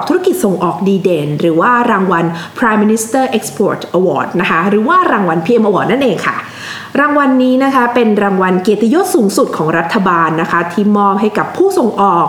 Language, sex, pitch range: Thai, female, 185-245 Hz